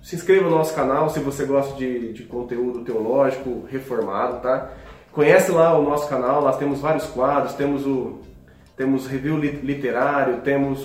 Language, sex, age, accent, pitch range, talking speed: Portuguese, male, 20-39, Brazilian, 135-185 Hz, 160 wpm